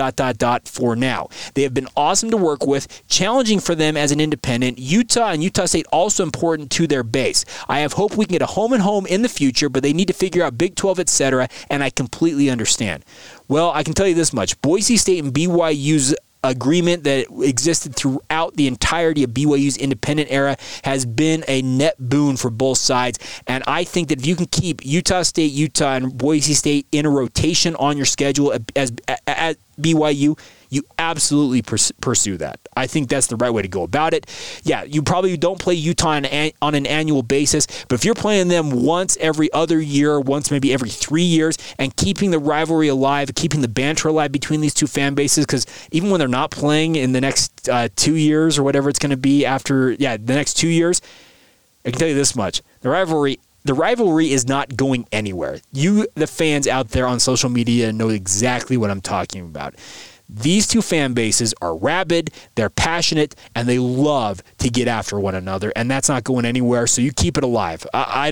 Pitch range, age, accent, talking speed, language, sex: 130-160 Hz, 30-49, American, 210 wpm, English, male